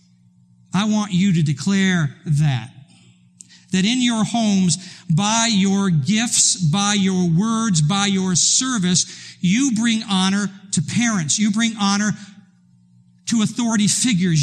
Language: English